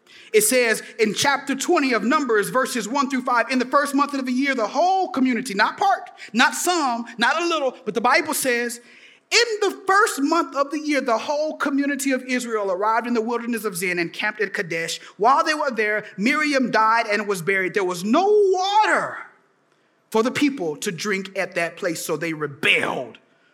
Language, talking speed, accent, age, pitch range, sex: English, 200 wpm, American, 30-49, 215-310 Hz, male